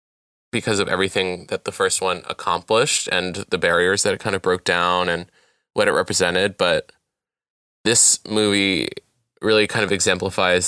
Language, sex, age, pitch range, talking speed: English, male, 20-39, 90-110 Hz, 155 wpm